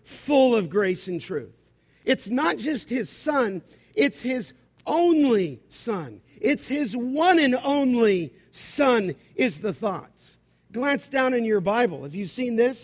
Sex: male